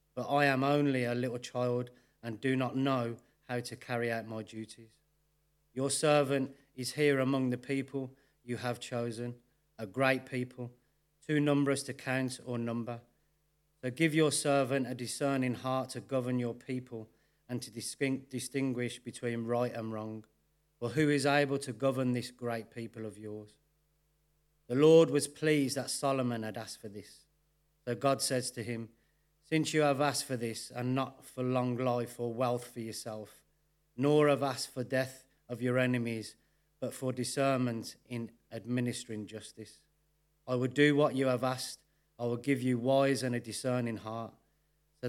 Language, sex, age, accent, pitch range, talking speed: English, male, 40-59, British, 115-140 Hz, 165 wpm